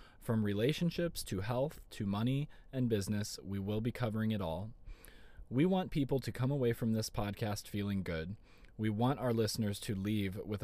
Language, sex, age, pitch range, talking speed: English, male, 20-39, 105-125 Hz, 180 wpm